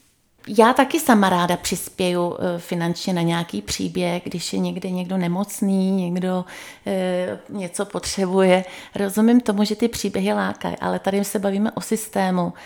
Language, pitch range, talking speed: Czech, 185-210 Hz, 140 wpm